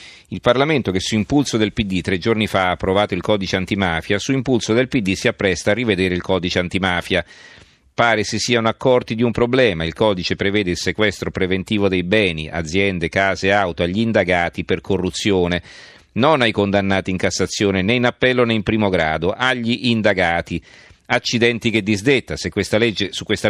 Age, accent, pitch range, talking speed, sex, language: 40-59, native, 90-110 Hz, 180 wpm, male, Italian